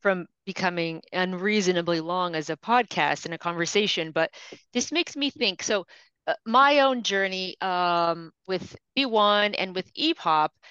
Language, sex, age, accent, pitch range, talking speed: English, female, 30-49, American, 180-240 Hz, 145 wpm